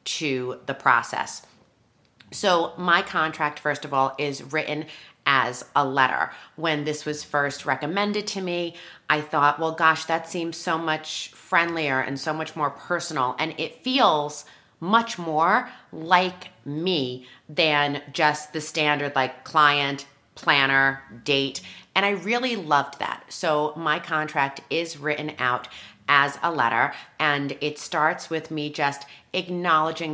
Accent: American